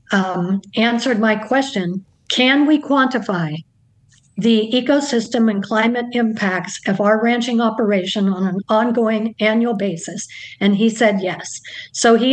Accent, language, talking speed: American, English, 130 wpm